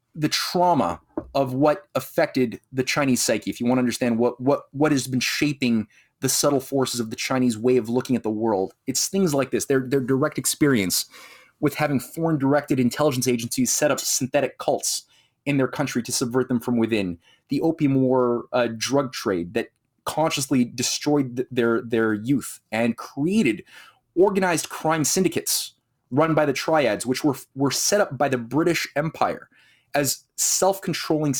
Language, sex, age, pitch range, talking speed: English, male, 30-49, 125-150 Hz, 170 wpm